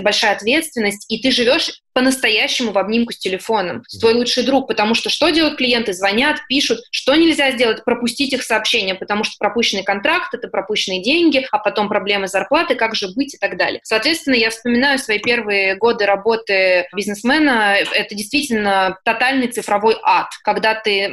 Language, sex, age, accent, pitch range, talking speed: Russian, female, 20-39, native, 200-245 Hz, 170 wpm